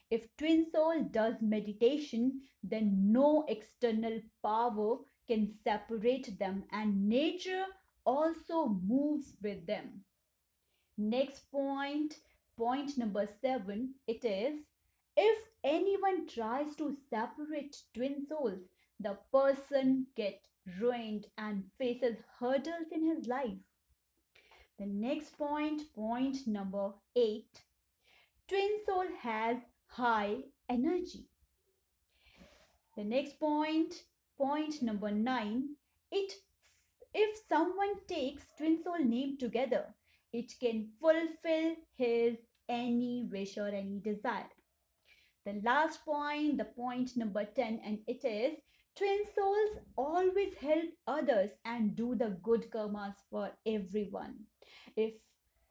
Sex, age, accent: female, 30-49, native